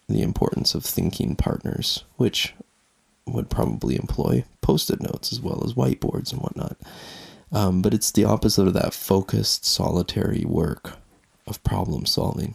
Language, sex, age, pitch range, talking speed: English, male, 20-39, 100-115 Hz, 150 wpm